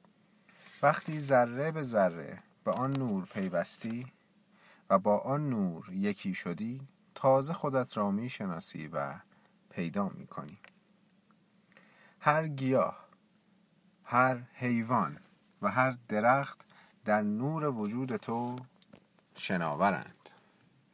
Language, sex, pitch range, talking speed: Persian, male, 115-180 Hz, 100 wpm